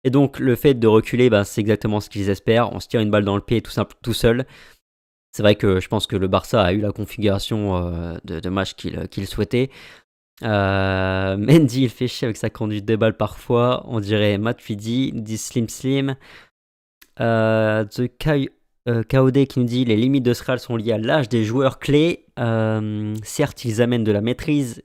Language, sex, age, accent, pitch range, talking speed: French, male, 20-39, French, 105-125 Hz, 205 wpm